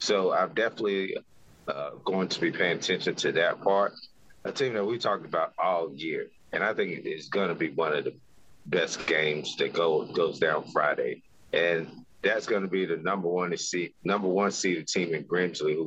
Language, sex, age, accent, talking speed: English, male, 30-49, American, 205 wpm